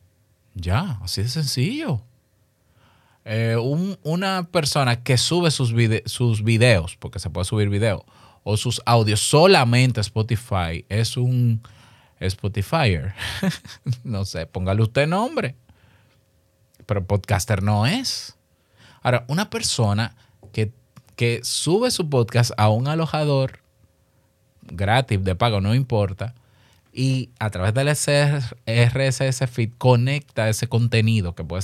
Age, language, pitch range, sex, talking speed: 30-49, Spanish, 100-130 Hz, male, 120 wpm